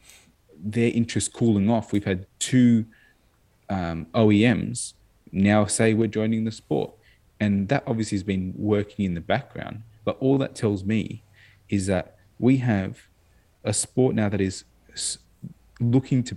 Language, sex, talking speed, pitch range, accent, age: English, male, 145 wpm, 95-115 Hz, Australian, 20-39